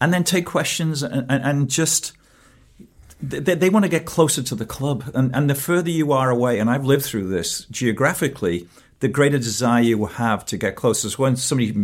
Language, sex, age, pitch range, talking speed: English, male, 50-69, 100-130 Hz, 225 wpm